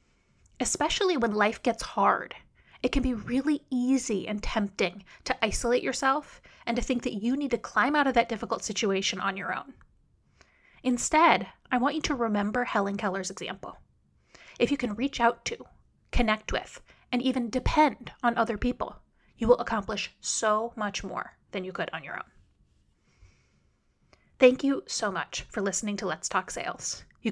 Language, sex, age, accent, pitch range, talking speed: English, female, 30-49, American, 210-265 Hz, 170 wpm